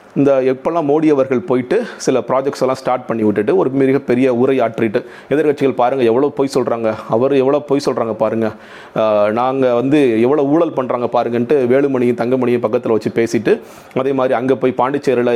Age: 40-59